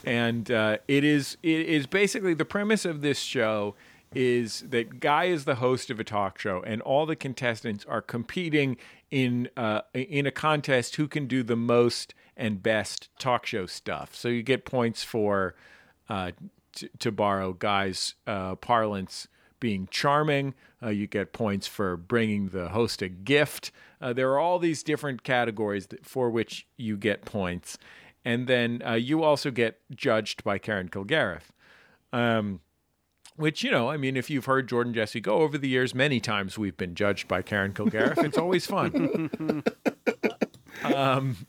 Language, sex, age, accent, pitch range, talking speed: English, male, 40-59, American, 110-155 Hz, 165 wpm